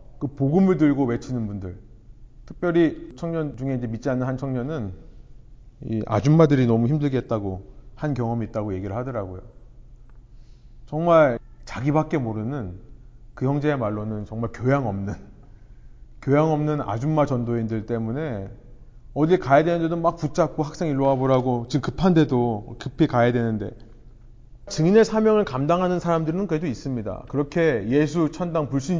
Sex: male